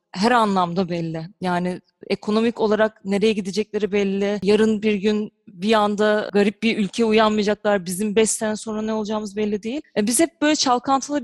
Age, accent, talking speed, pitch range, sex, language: 30-49, native, 160 wpm, 195-230 Hz, female, Turkish